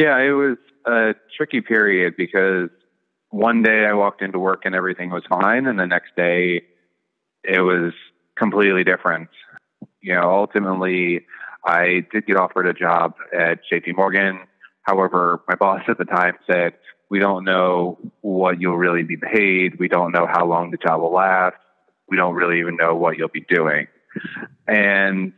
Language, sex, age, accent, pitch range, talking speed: English, male, 30-49, American, 85-100 Hz, 170 wpm